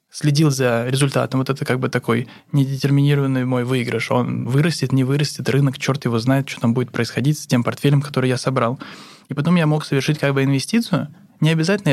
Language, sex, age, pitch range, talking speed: Russian, male, 20-39, 125-150 Hz, 195 wpm